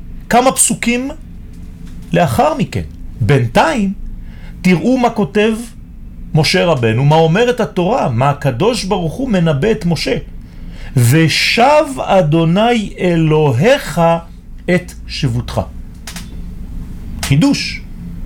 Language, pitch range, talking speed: French, 125-195 Hz, 80 wpm